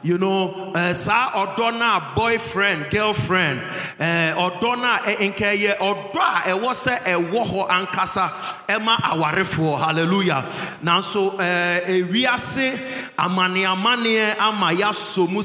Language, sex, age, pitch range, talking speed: English, male, 30-49, 175-215 Hz, 105 wpm